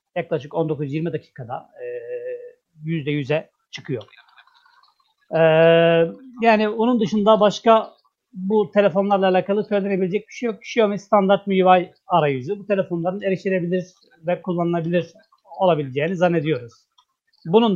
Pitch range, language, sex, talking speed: 160-205 Hz, Turkish, male, 95 wpm